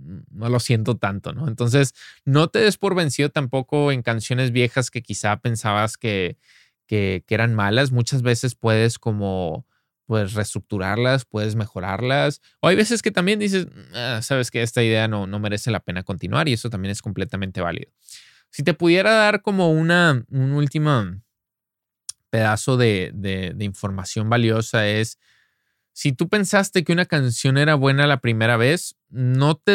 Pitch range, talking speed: 115-160 Hz, 165 wpm